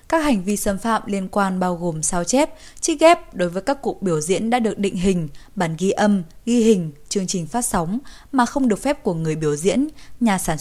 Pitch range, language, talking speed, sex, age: 175-230 Hz, Vietnamese, 240 wpm, female, 20-39